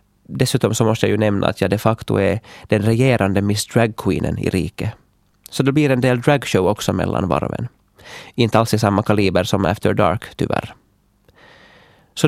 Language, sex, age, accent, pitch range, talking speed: Swedish, male, 30-49, Finnish, 100-125 Hz, 175 wpm